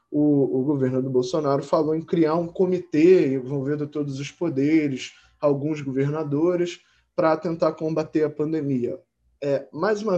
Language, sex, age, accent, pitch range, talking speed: Portuguese, male, 20-39, Brazilian, 130-165 Hz, 135 wpm